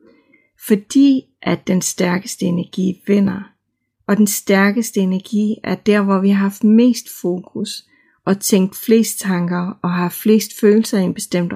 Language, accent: Danish, native